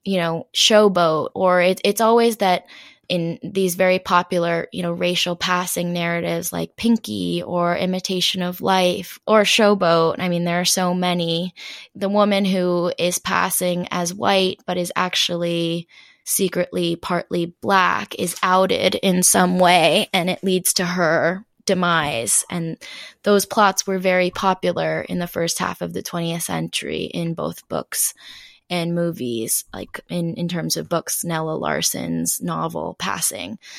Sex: female